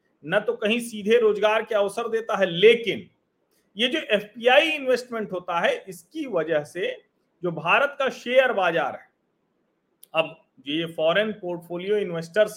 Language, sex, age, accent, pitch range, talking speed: Hindi, male, 40-59, native, 175-245 Hz, 145 wpm